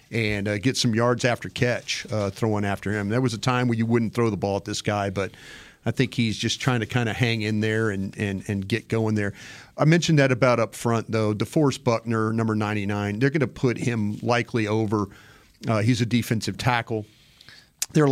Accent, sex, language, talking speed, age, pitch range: American, male, English, 220 wpm, 40-59, 105-120 Hz